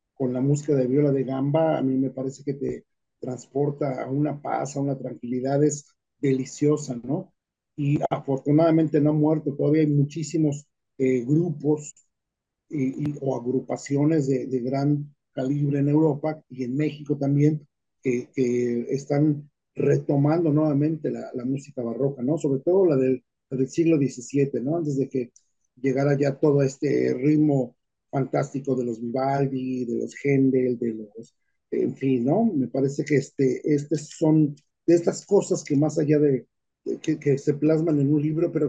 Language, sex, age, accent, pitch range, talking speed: Spanish, male, 40-59, Mexican, 135-160 Hz, 170 wpm